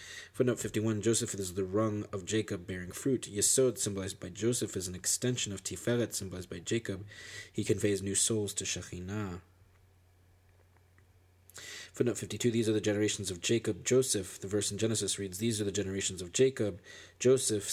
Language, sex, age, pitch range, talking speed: English, male, 20-39, 95-115 Hz, 160 wpm